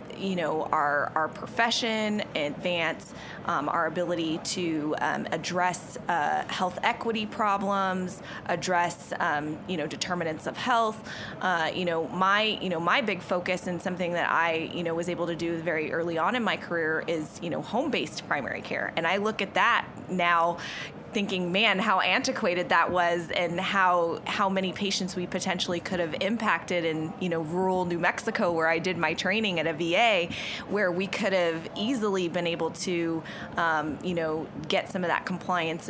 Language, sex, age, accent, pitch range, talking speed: English, female, 20-39, American, 165-190 Hz, 175 wpm